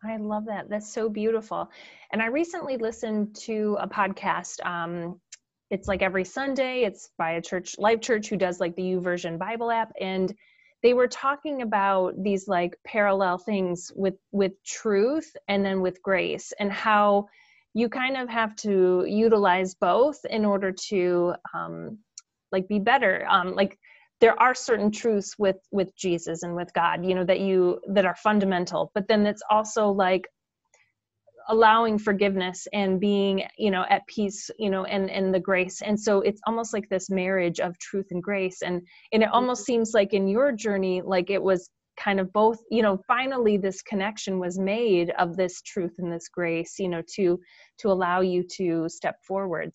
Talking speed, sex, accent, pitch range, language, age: 180 wpm, female, American, 185-220 Hz, English, 30-49